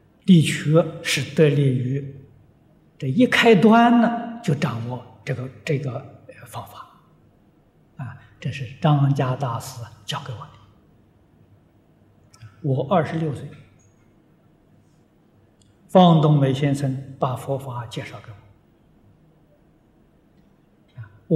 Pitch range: 130-160 Hz